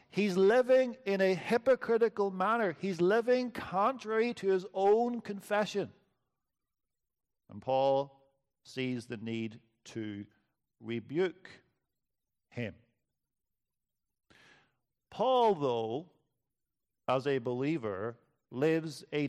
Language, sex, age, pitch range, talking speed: English, male, 50-69, 130-195 Hz, 85 wpm